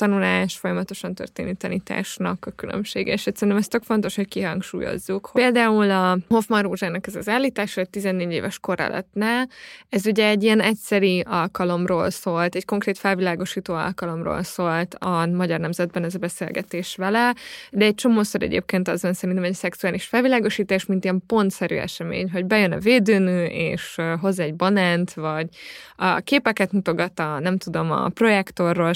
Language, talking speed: Hungarian, 150 wpm